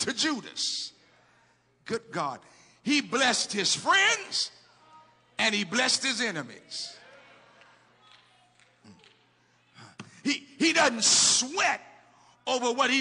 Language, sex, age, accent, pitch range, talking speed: English, male, 50-69, American, 250-315 Hz, 90 wpm